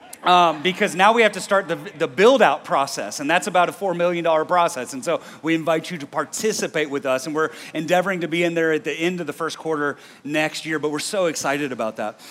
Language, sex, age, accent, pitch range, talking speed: English, male, 30-49, American, 165-215 Hz, 240 wpm